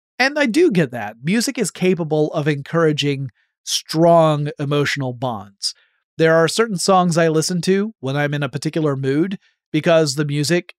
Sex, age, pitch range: male, 30-49, 140-180 Hz